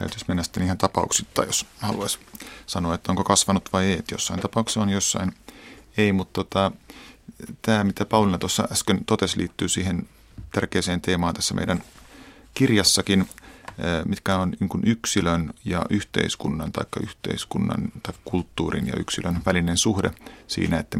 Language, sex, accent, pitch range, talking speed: Finnish, male, native, 90-100 Hz, 135 wpm